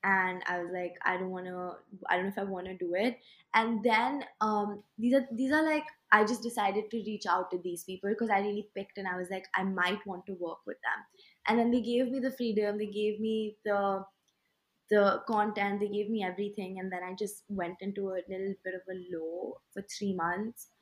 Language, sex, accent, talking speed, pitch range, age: English, female, Indian, 235 wpm, 185-230 Hz, 20-39